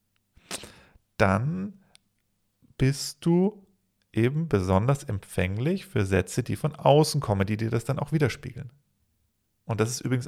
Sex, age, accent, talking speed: male, 40-59, German, 130 wpm